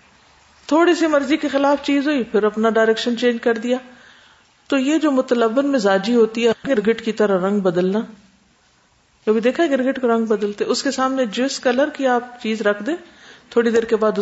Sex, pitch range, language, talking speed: female, 210-280 Hz, Urdu, 185 wpm